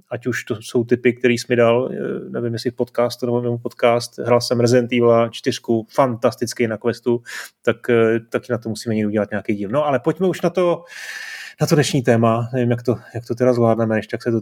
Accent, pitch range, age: native, 115-135 Hz, 30-49